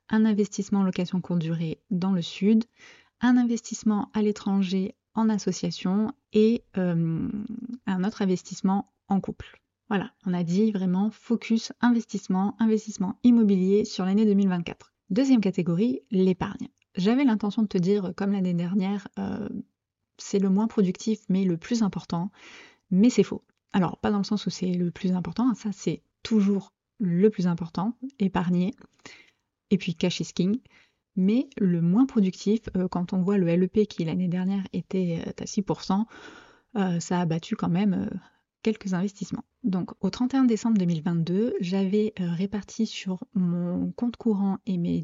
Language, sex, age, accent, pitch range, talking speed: French, female, 30-49, French, 180-215 Hz, 150 wpm